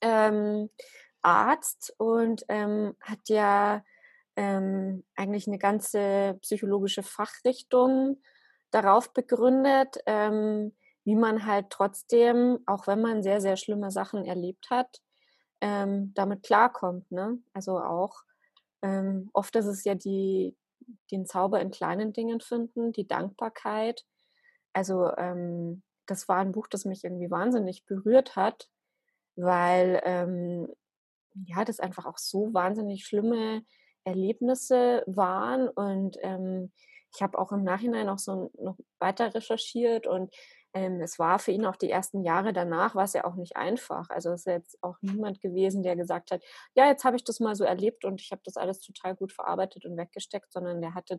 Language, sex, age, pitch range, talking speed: German, female, 20-39, 185-230 Hz, 155 wpm